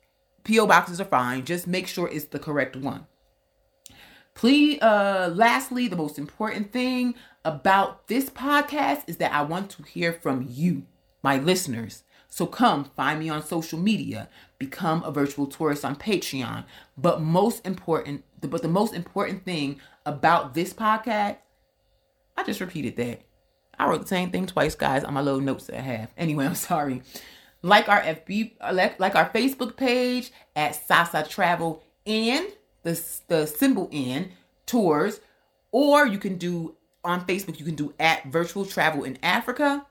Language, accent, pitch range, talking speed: English, American, 155-225 Hz, 160 wpm